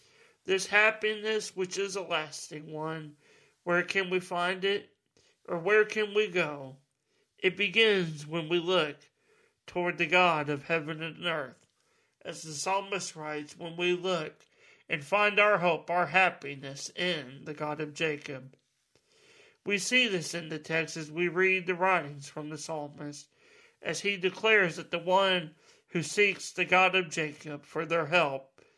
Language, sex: English, male